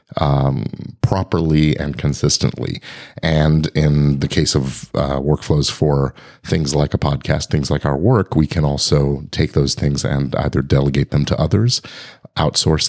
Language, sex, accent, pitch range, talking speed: English, male, American, 70-100 Hz, 155 wpm